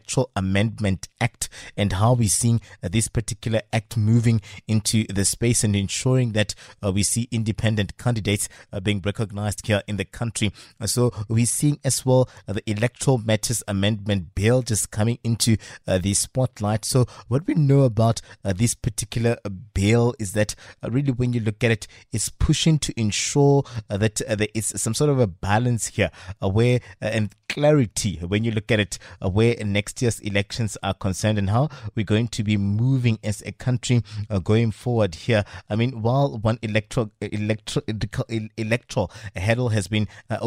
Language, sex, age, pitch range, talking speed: English, male, 20-39, 105-120 Hz, 180 wpm